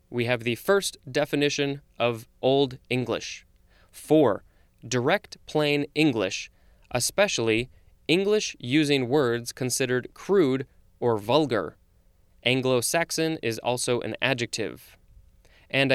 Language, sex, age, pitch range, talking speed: English, male, 20-39, 115-145 Hz, 100 wpm